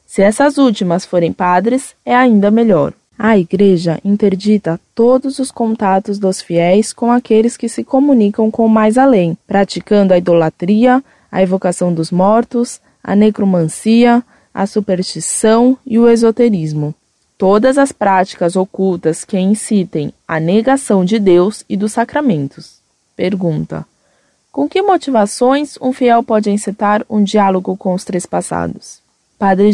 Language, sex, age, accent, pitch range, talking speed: Portuguese, female, 20-39, Brazilian, 185-240 Hz, 135 wpm